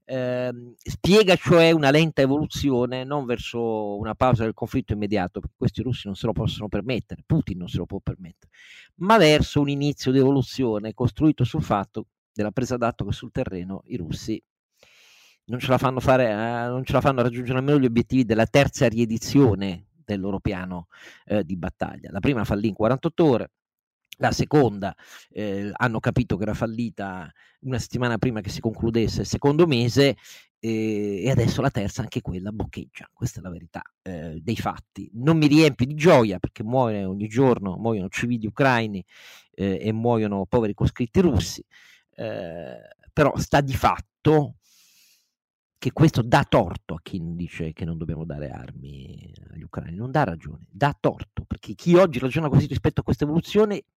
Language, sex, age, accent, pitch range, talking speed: Italian, male, 40-59, native, 105-135 Hz, 175 wpm